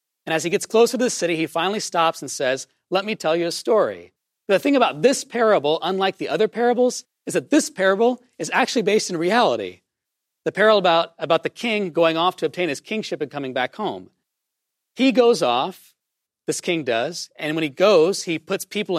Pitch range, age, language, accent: 155-210 Hz, 40-59, English, American